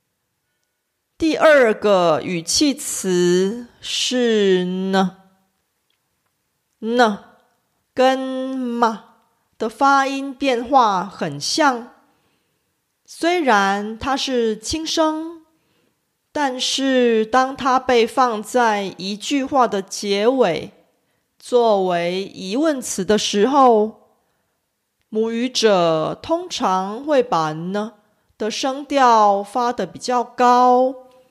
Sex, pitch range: female, 200-260 Hz